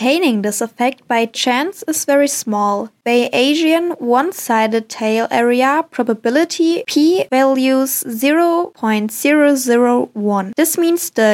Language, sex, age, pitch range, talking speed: German, female, 10-29, 230-295 Hz, 95 wpm